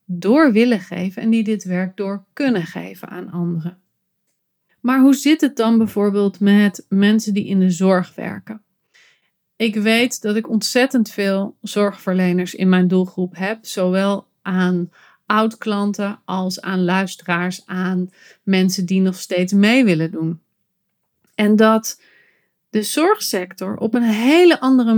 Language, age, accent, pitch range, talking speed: Dutch, 30-49, Dutch, 185-235 Hz, 140 wpm